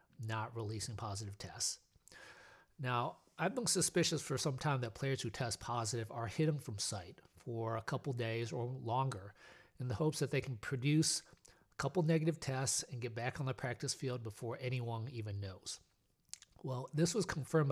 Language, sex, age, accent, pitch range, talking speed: English, male, 40-59, American, 110-135 Hz, 175 wpm